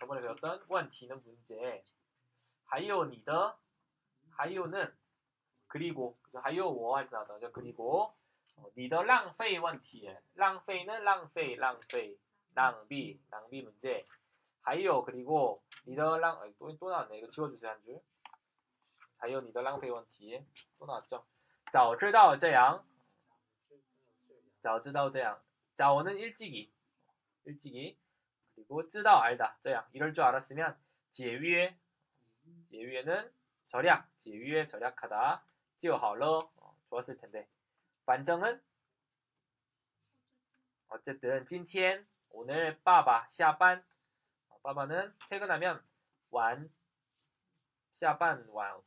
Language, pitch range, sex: Korean, 125-170 Hz, male